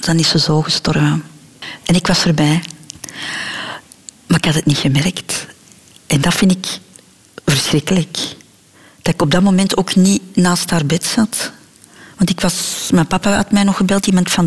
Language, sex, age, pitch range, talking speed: Dutch, female, 40-59, 175-215 Hz, 175 wpm